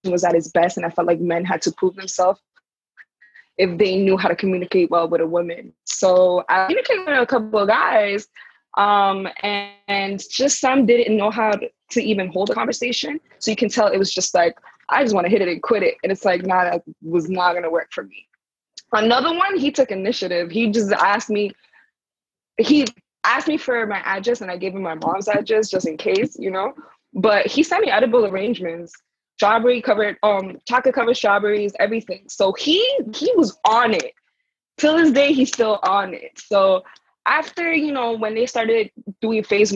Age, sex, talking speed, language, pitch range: 20-39, female, 205 wpm, English, 190-245 Hz